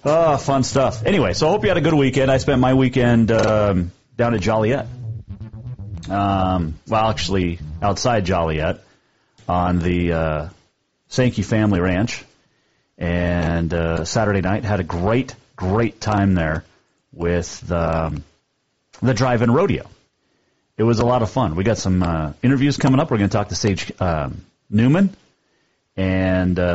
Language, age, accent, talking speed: English, 40-59, American, 155 wpm